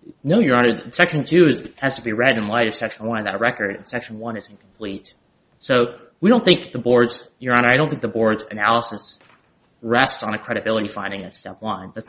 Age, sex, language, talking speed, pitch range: 20-39, male, English, 225 wpm, 105-125 Hz